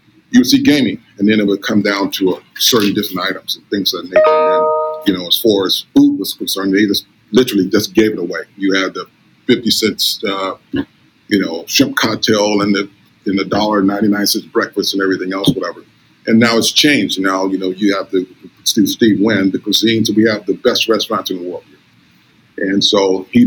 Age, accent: 40-59, American